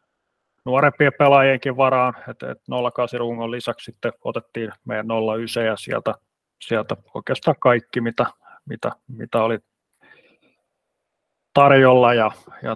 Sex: male